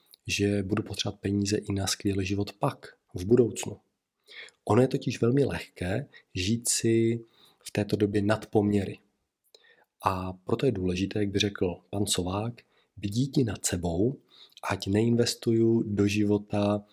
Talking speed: 140 wpm